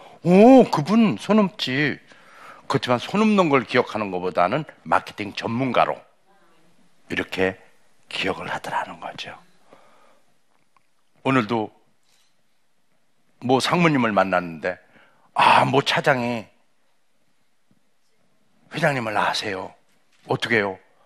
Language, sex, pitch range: Korean, male, 100-140 Hz